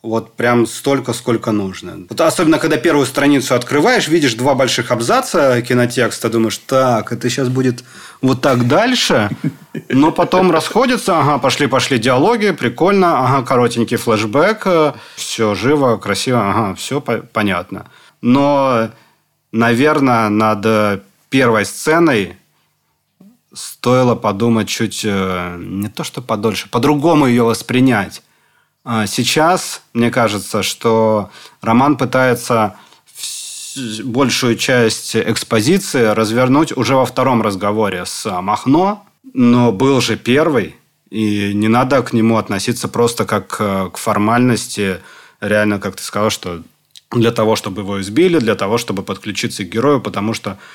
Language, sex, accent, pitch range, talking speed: Russian, male, native, 105-130 Hz, 120 wpm